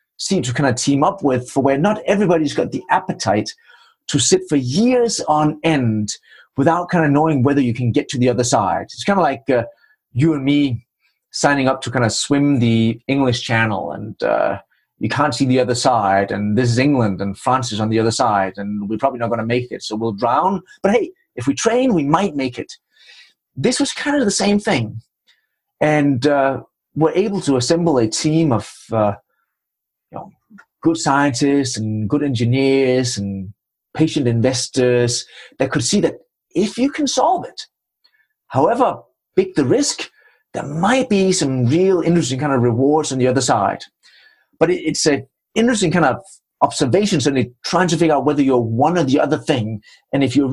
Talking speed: 190 wpm